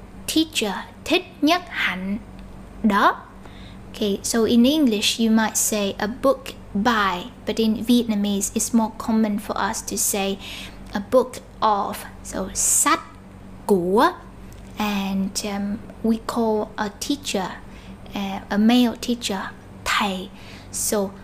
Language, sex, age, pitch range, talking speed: Vietnamese, female, 10-29, 195-230 Hz, 120 wpm